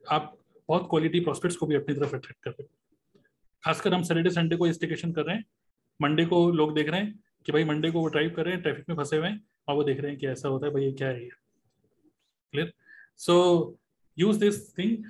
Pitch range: 155-195 Hz